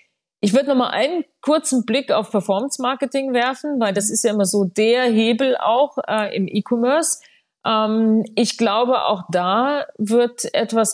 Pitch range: 195-240 Hz